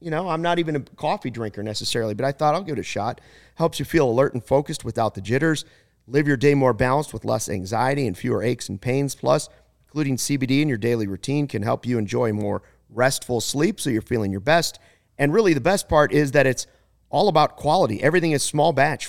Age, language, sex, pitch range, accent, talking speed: 40-59, English, male, 115-150 Hz, American, 230 wpm